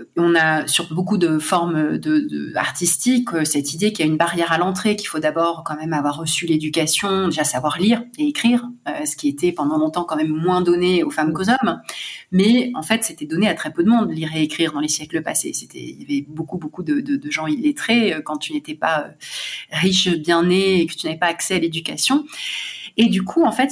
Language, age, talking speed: French, 30-49, 235 wpm